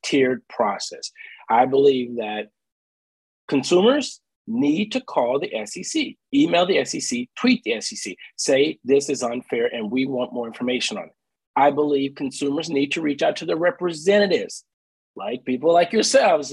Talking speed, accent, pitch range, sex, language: 155 wpm, American, 145-225 Hz, male, English